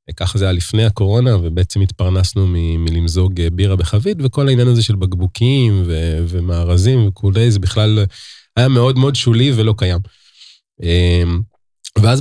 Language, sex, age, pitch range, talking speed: Hebrew, male, 20-39, 95-125 Hz, 140 wpm